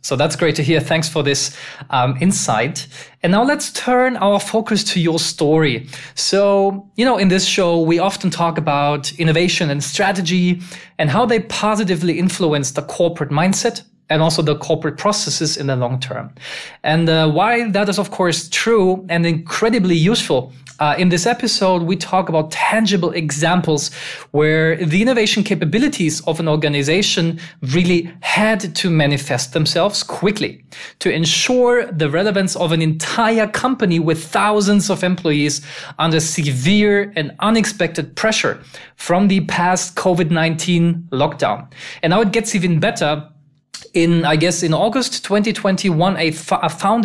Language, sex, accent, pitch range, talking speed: English, male, German, 155-195 Hz, 155 wpm